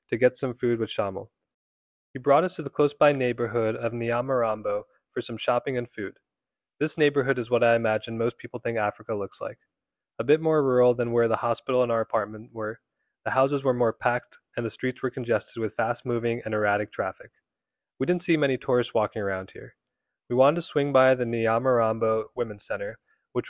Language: English